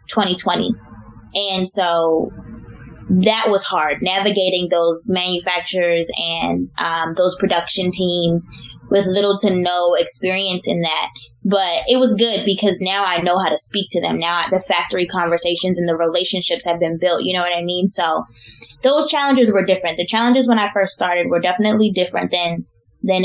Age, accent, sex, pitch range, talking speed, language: 10-29, American, female, 170-195 Hz, 170 wpm, English